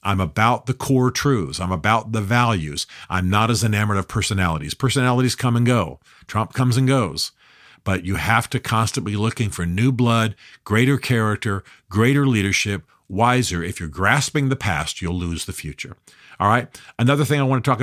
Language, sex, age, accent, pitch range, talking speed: English, male, 50-69, American, 95-125 Hz, 185 wpm